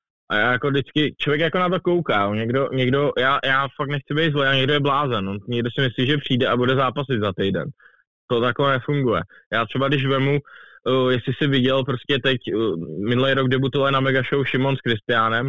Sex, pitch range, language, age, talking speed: male, 120-135 Hz, Czech, 20-39, 210 wpm